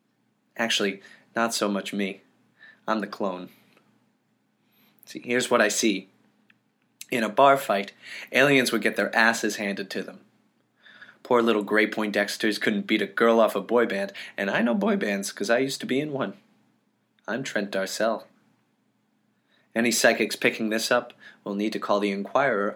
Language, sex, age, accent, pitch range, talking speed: English, male, 20-39, American, 100-115 Hz, 170 wpm